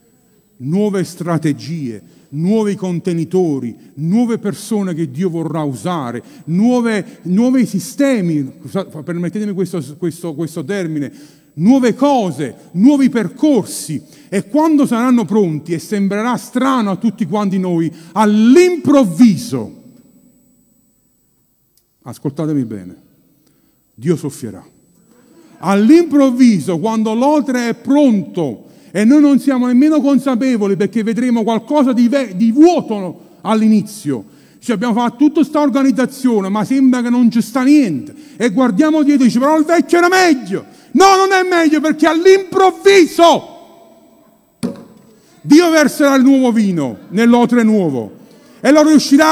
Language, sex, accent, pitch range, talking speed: Italian, male, native, 190-280 Hz, 115 wpm